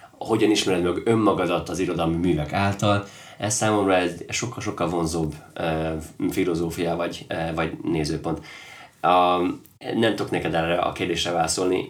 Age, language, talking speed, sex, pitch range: 20-39, Hungarian, 140 wpm, male, 85-105 Hz